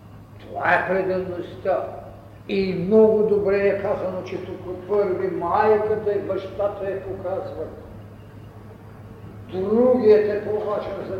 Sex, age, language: male, 50-69, Bulgarian